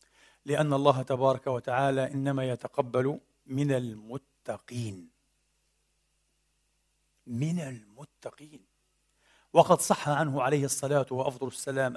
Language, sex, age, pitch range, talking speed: Arabic, male, 50-69, 135-185 Hz, 85 wpm